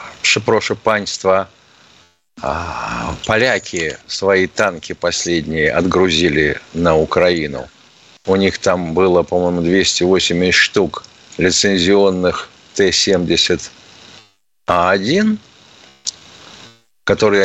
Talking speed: 60 wpm